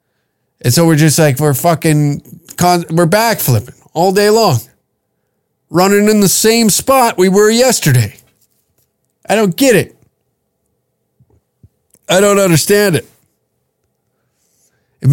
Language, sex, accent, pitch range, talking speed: English, male, American, 115-155 Hz, 115 wpm